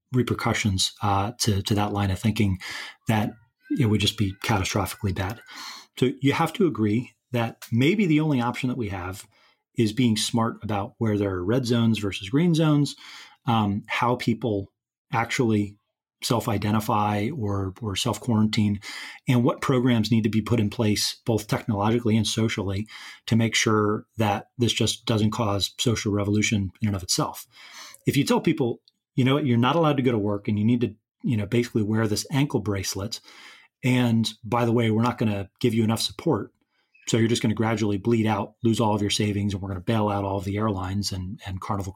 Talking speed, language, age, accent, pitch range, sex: 195 wpm, English, 30-49, American, 105-125 Hz, male